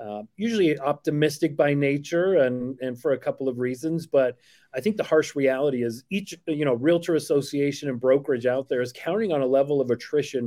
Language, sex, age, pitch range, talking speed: English, male, 30-49, 120-145 Hz, 200 wpm